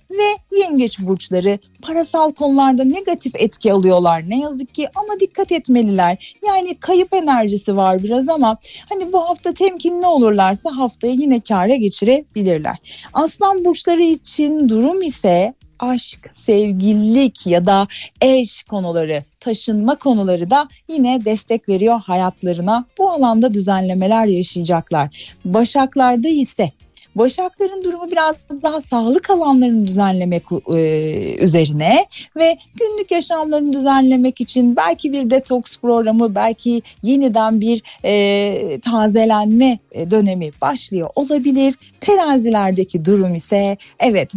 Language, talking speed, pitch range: Turkish, 110 wpm, 195-290 Hz